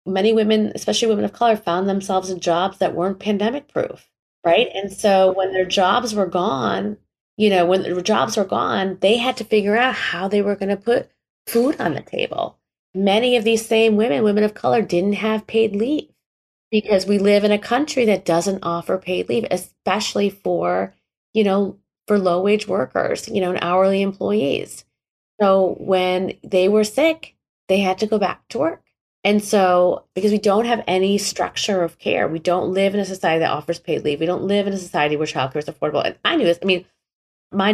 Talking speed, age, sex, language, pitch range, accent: 200 wpm, 30-49, female, English, 180-215 Hz, American